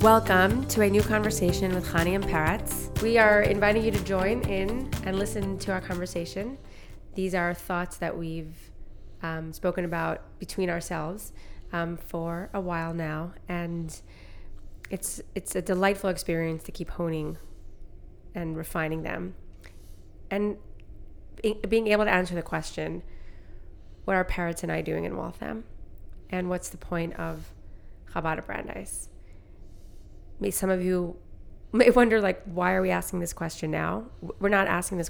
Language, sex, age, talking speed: English, female, 20-39, 150 wpm